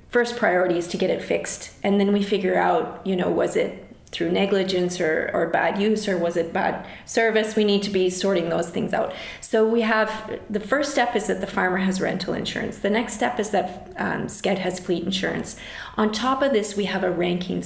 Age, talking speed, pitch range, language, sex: 30-49, 225 wpm, 185-220 Hz, Finnish, female